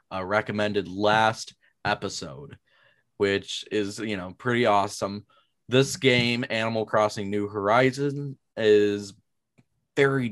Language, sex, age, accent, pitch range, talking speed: English, male, 20-39, American, 100-115 Hz, 105 wpm